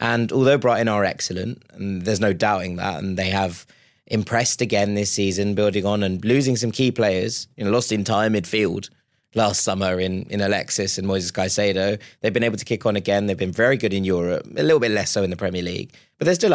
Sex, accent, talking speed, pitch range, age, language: male, British, 220 wpm, 100-120 Hz, 20-39, English